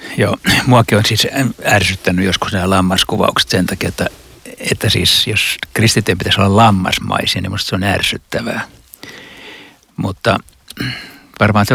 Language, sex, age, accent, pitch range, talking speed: Finnish, male, 60-79, native, 95-110 Hz, 135 wpm